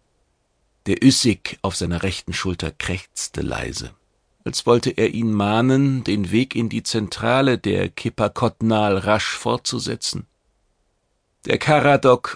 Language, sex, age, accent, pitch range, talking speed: German, male, 40-59, German, 90-115 Hz, 115 wpm